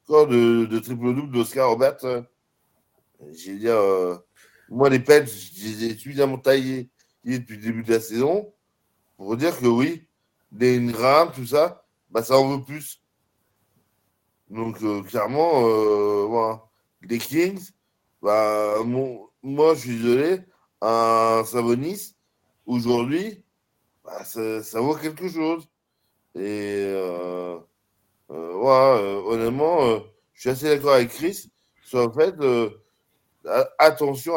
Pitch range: 110-150 Hz